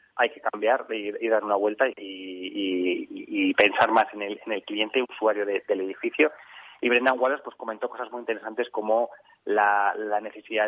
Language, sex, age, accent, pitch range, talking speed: Spanish, male, 20-39, Spanish, 105-125 Hz, 195 wpm